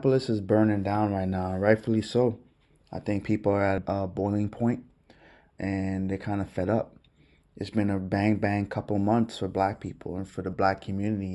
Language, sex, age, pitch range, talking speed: English, male, 20-39, 95-105 Hz, 185 wpm